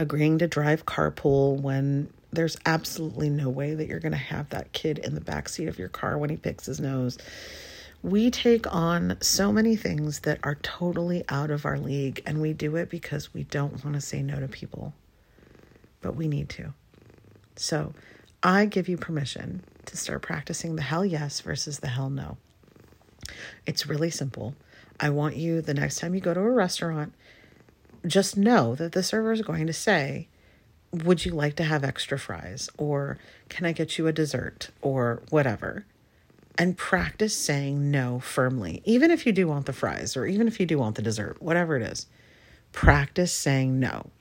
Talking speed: 185 wpm